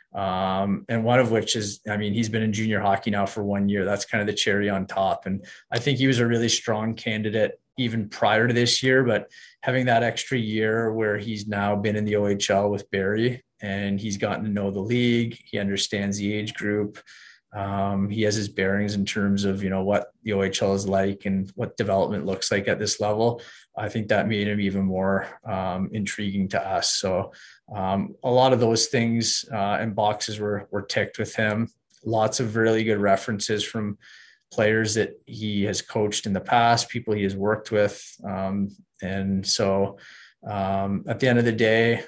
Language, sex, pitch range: English, male, 100-110 Hz